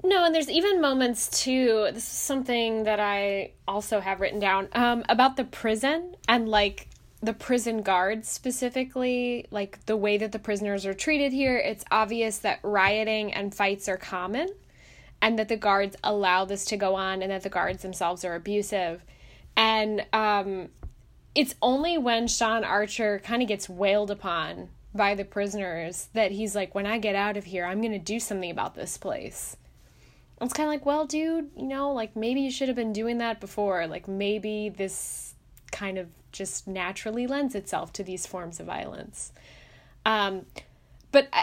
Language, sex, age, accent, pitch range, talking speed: English, female, 10-29, American, 195-235 Hz, 180 wpm